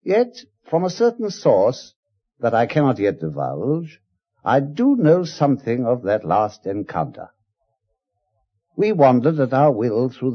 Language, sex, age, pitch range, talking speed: English, male, 60-79, 110-150 Hz, 140 wpm